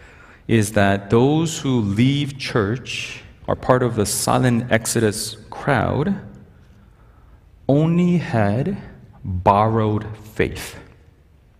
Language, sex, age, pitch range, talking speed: English, male, 40-59, 100-120 Hz, 90 wpm